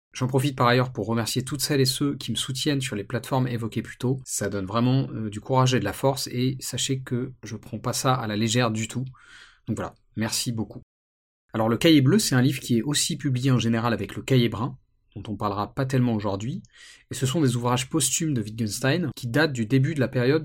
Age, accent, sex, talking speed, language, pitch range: 30-49, French, male, 240 wpm, French, 110-135 Hz